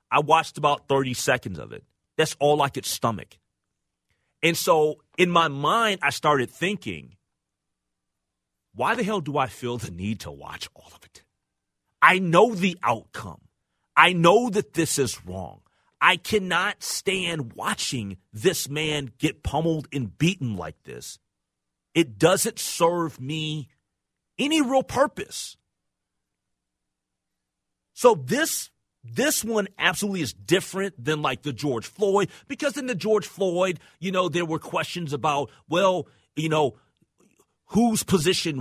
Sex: male